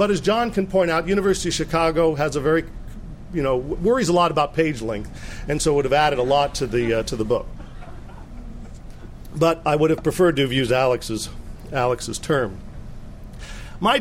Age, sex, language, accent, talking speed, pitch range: 50-69, male, English, American, 195 wpm, 130-175 Hz